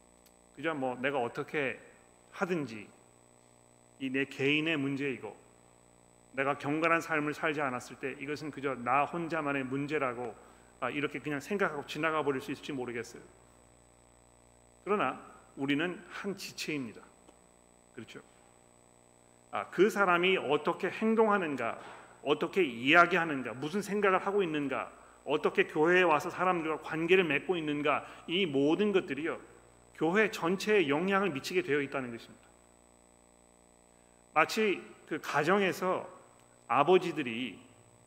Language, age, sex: Korean, 40-59, male